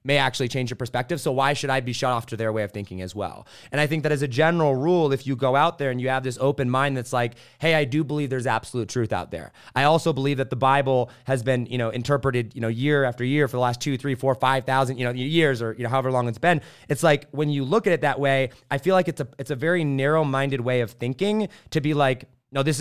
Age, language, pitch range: 30-49, English, 125-155 Hz